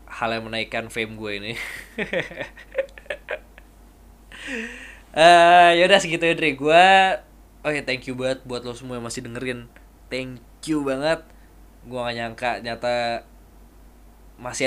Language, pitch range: Indonesian, 110-135 Hz